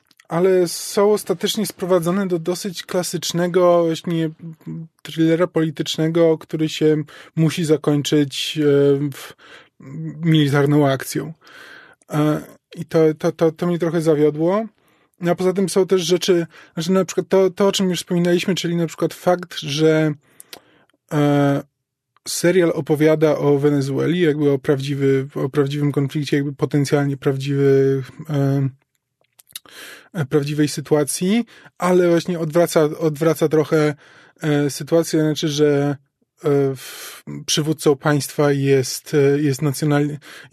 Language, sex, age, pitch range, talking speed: Polish, male, 20-39, 145-175 Hz, 105 wpm